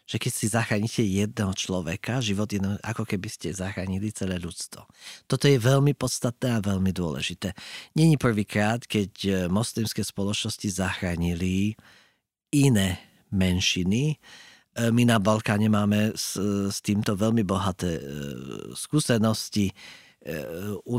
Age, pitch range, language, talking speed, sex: 40-59, 100-125 Hz, Slovak, 120 wpm, male